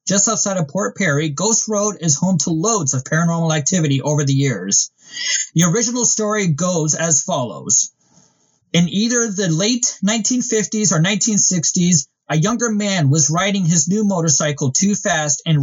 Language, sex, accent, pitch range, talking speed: English, male, American, 145-195 Hz, 155 wpm